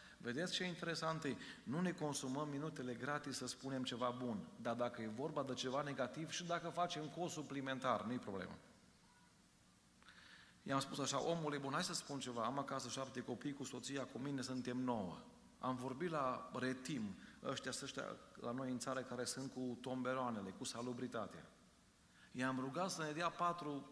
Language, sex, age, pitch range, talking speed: Romanian, male, 40-59, 125-160 Hz, 170 wpm